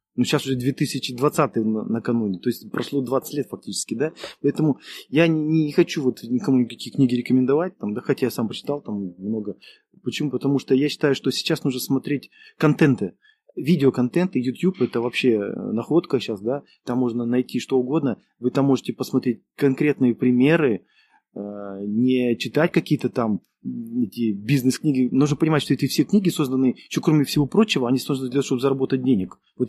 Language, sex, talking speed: Russian, male, 165 wpm